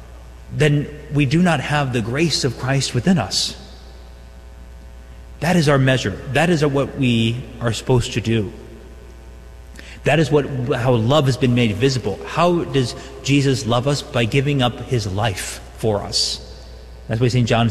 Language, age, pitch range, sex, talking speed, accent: English, 30-49, 105-135 Hz, male, 165 wpm, American